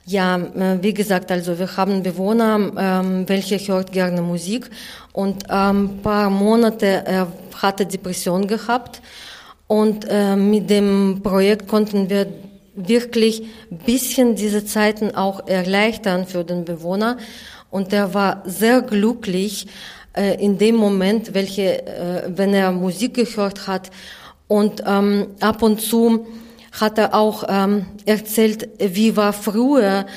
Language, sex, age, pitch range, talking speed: German, female, 20-39, 195-220 Hz, 135 wpm